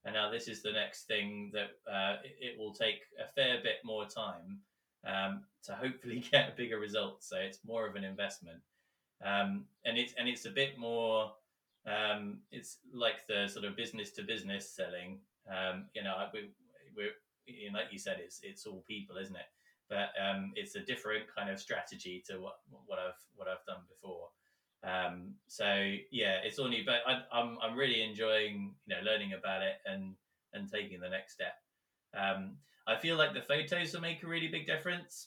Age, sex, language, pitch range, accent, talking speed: 20-39, male, English, 100-135 Hz, British, 190 wpm